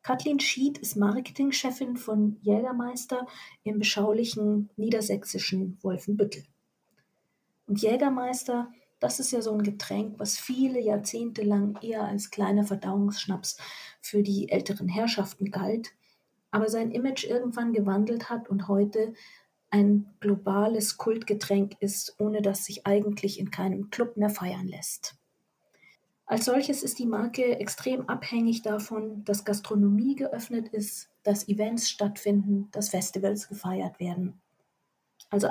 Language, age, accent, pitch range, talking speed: German, 40-59, German, 200-225 Hz, 125 wpm